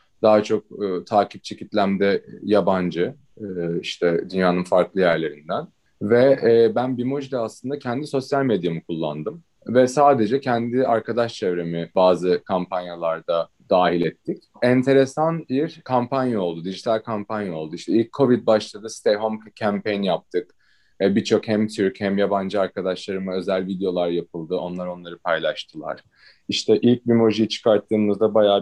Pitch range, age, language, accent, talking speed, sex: 90-115 Hz, 30-49, Turkish, native, 130 wpm, male